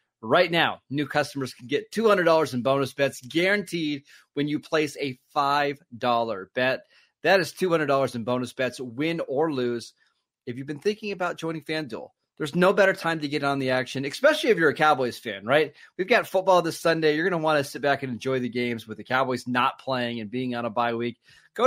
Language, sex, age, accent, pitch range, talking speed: English, male, 30-49, American, 125-165 Hz, 215 wpm